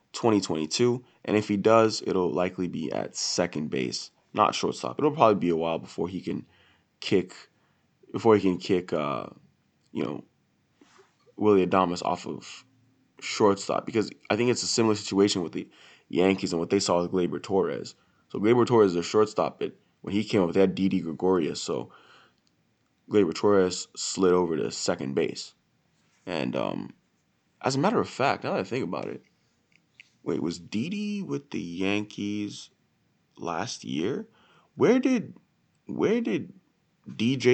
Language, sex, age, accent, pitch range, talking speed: English, male, 20-39, American, 90-110 Hz, 165 wpm